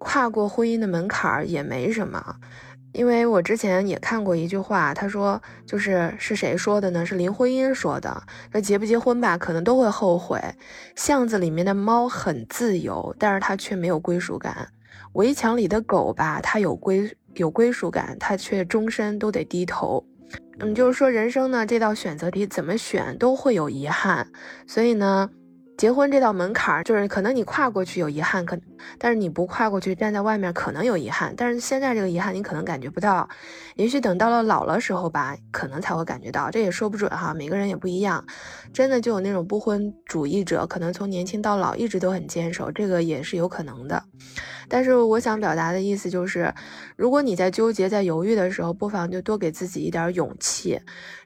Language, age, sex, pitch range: Chinese, 20-39, female, 175-225 Hz